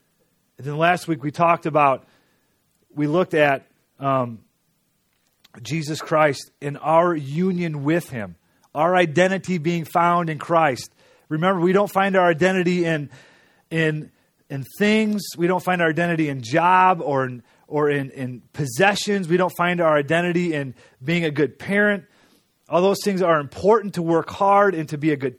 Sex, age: male, 30-49